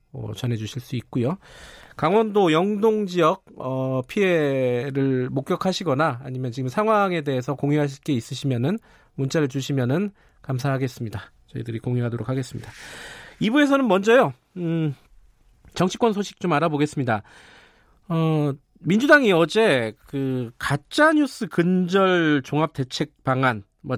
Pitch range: 135-210 Hz